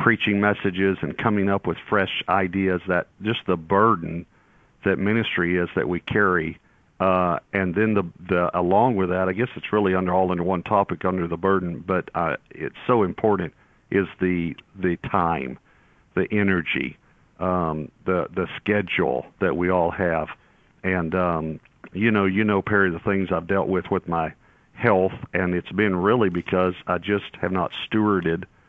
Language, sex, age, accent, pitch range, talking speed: English, male, 50-69, American, 85-100 Hz, 170 wpm